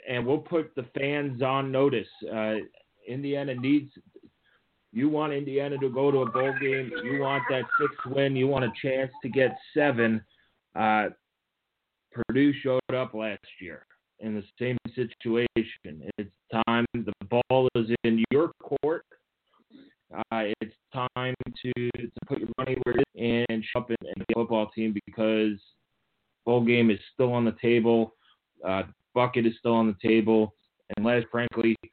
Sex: male